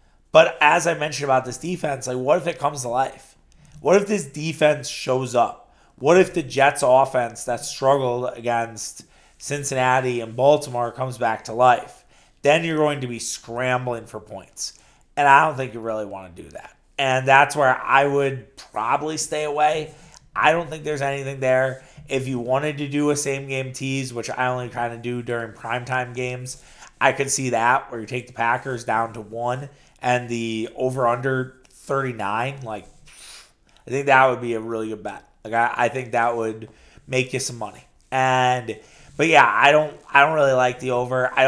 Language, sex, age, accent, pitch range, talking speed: English, male, 30-49, American, 120-140 Hz, 190 wpm